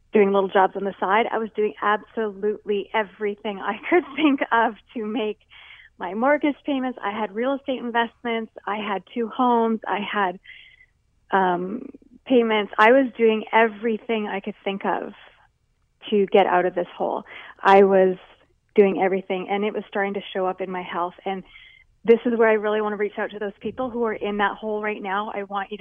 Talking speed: 195 wpm